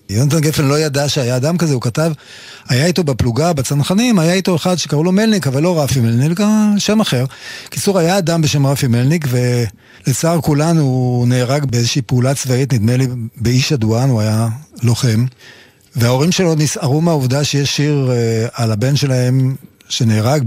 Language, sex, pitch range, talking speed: Hebrew, male, 125-155 Hz, 160 wpm